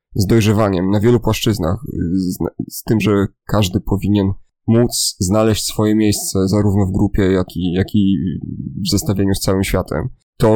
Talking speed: 160 wpm